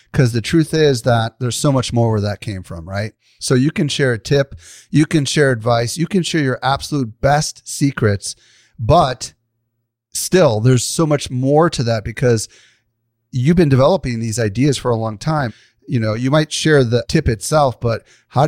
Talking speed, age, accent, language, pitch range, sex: 190 wpm, 40-59, American, English, 115-140 Hz, male